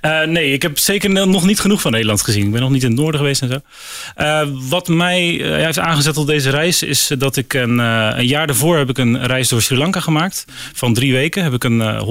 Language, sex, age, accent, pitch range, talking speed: Dutch, male, 30-49, Dutch, 115-150 Hz, 265 wpm